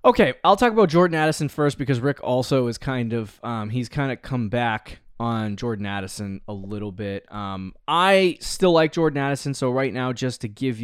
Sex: male